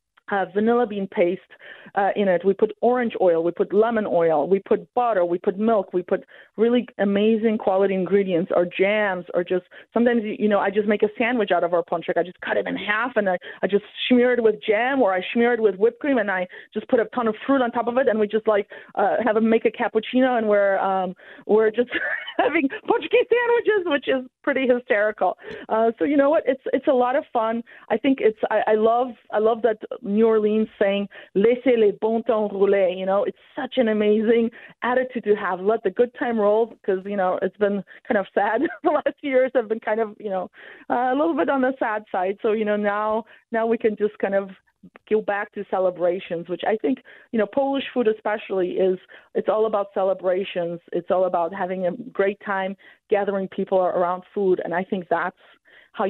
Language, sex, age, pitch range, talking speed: English, female, 30-49, 190-235 Hz, 220 wpm